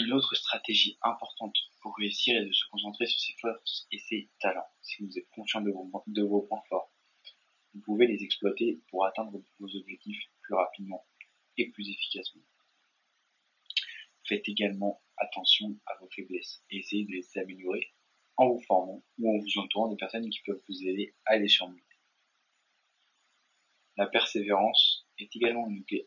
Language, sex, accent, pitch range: French, male, French, 100-110 Hz